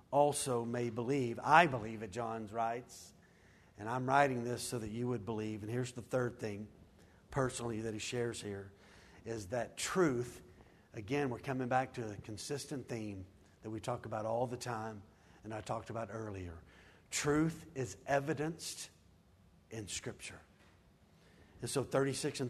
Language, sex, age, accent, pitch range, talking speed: English, male, 50-69, American, 110-145 Hz, 155 wpm